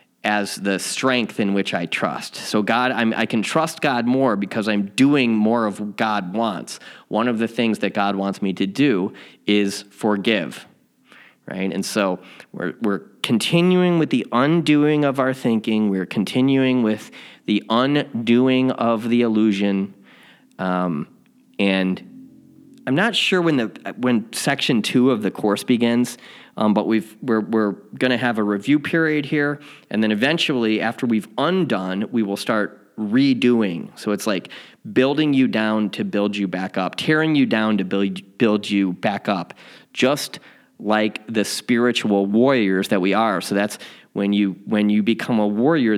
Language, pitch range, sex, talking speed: English, 100-135 Hz, male, 165 wpm